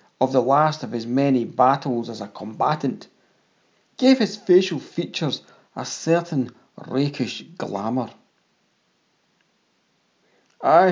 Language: English